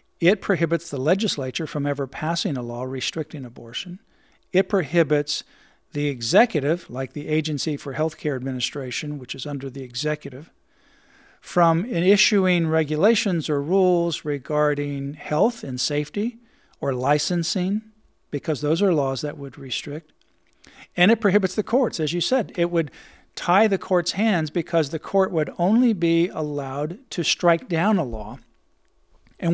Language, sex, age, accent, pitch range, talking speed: English, male, 50-69, American, 145-185 Hz, 145 wpm